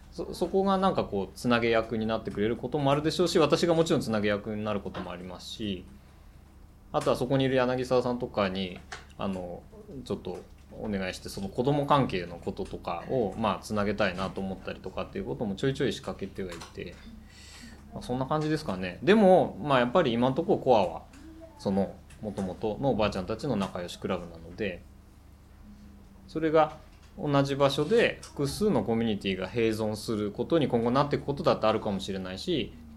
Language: Japanese